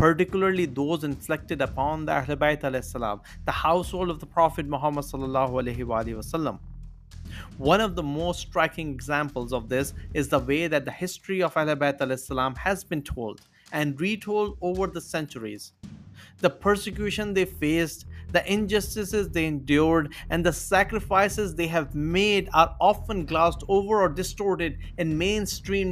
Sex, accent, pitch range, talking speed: male, Indian, 145-190 Hz, 135 wpm